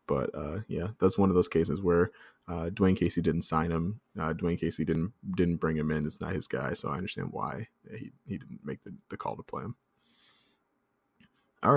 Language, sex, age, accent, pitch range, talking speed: English, male, 20-39, American, 85-100 Hz, 215 wpm